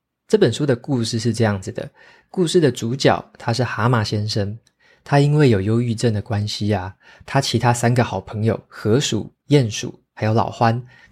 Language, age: Chinese, 20-39